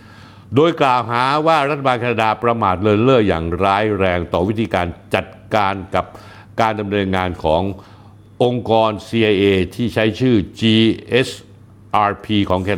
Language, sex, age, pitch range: Thai, male, 60-79, 100-120 Hz